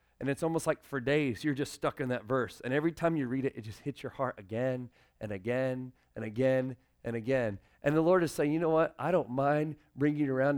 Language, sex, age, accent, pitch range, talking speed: English, male, 40-59, American, 95-155 Hz, 250 wpm